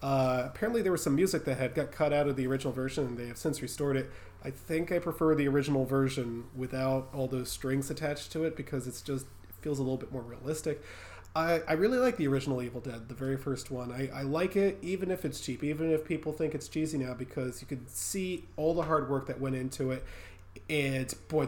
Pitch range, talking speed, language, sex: 125-155 Hz, 235 wpm, English, male